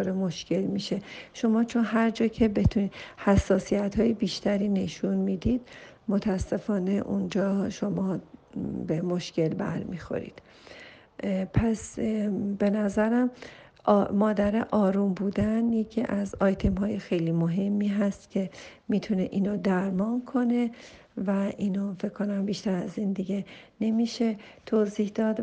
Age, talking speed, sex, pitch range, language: 50-69, 110 wpm, female, 195-220 Hz, Persian